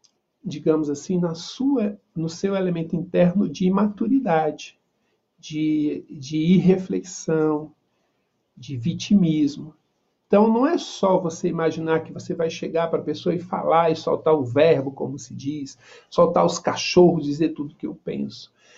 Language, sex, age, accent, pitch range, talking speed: Portuguese, male, 50-69, Brazilian, 150-205 Hz, 145 wpm